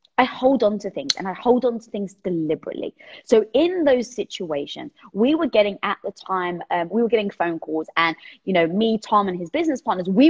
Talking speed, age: 220 wpm, 20-39